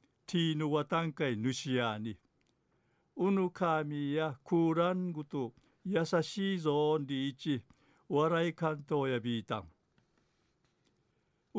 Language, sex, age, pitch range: Japanese, male, 60-79, 135-165 Hz